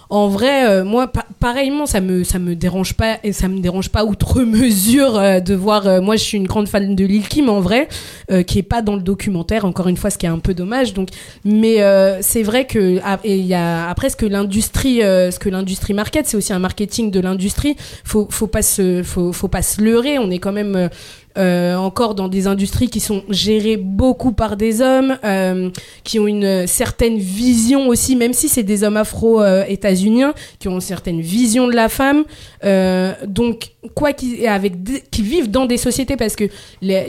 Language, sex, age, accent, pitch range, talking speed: French, female, 20-39, French, 190-235 Hz, 225 wpm